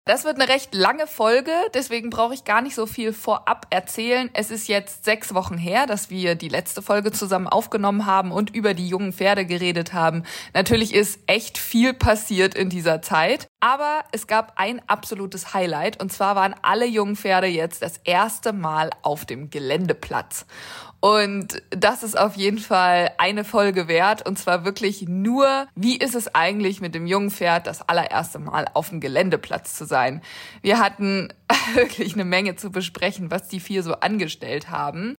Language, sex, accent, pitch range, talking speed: German, female, German, 180-225 Hz, 180 wpm